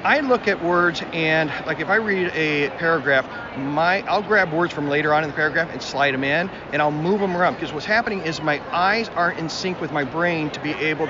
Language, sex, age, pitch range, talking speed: English, male, 40-59, 155-195 Hz, 245 wpm